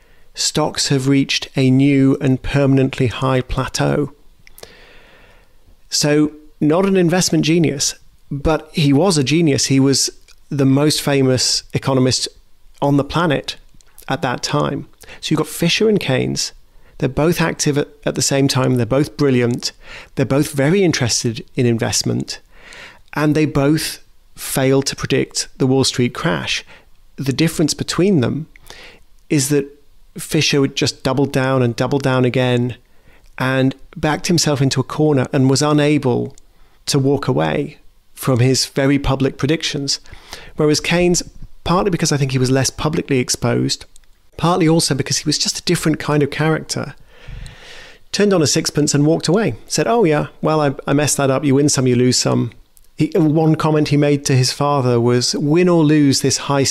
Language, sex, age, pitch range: English, male, 40-59, 130-155 Hz